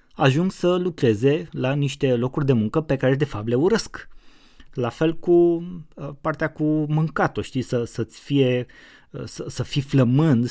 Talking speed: 150 wpm